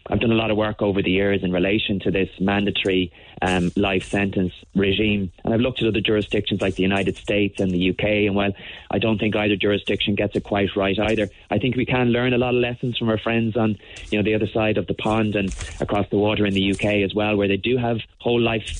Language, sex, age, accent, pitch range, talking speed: English, male, 20-39, Irish, 100-110 Hz, 260 wpm